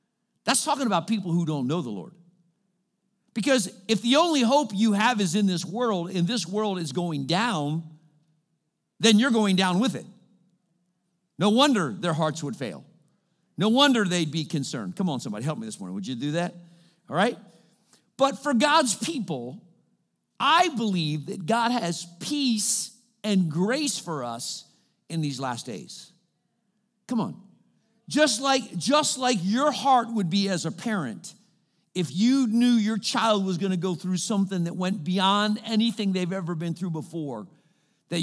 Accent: American